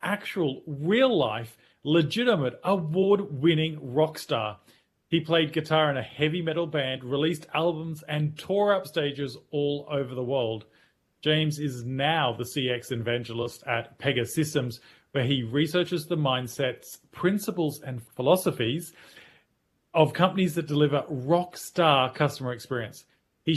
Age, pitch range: 40-59, 130-165 Hz